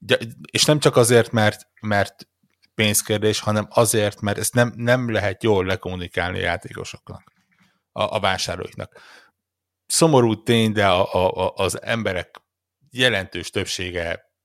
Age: 60-79